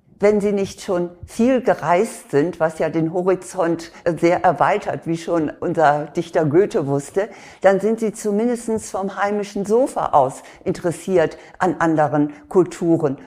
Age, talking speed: 50-69, 140 wpm